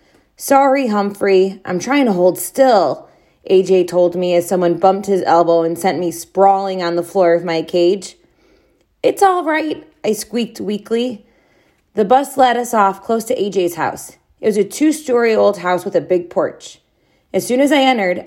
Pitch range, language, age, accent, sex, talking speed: 175-255 Hz, English, 20-39, American, female, 180 wpm